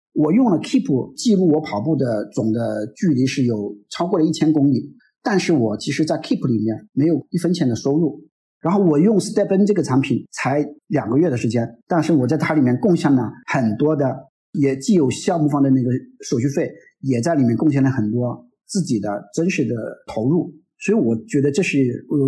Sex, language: male, Chinese